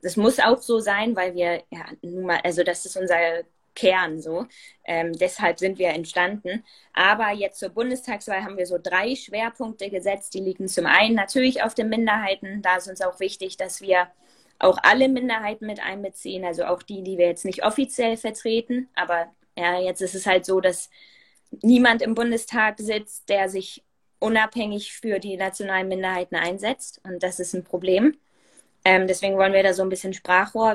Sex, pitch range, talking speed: female, 185-220 Hz, 185 wpm